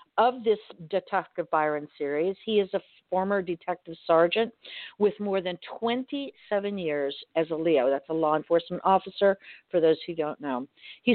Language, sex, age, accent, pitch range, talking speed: English, female, 50-69, American, 160-200 Hz, 160 wpm